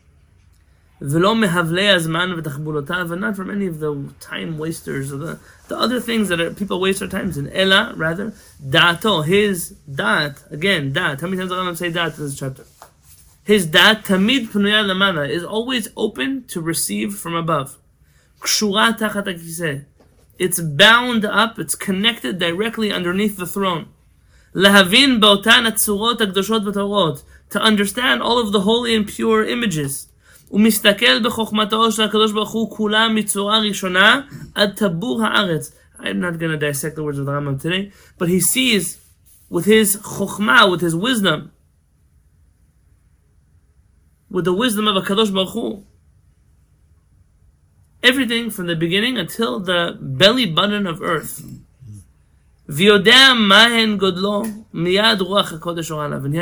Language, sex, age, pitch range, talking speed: English, male, 20-39, 150-215 Hz, 110 wpm